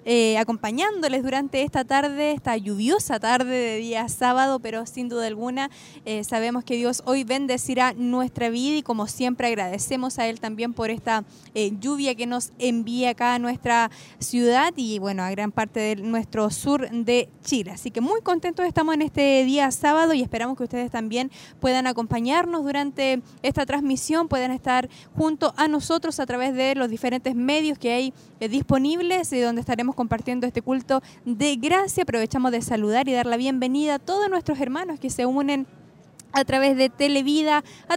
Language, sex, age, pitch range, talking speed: Spanish, female, 10-29, 240-285 Hz, 175 wpm